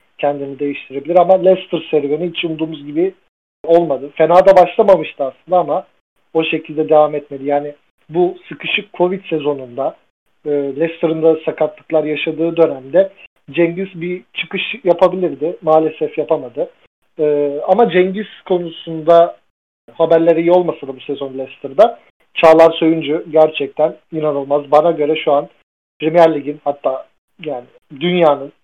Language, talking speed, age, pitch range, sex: Turkish, 125 wpm, 40-59, 145-170 Hz, male